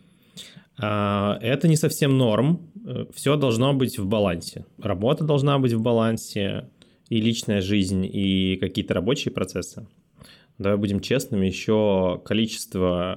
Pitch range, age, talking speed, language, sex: 95-125 Hz, 20-39, 120 wpm, Russian, male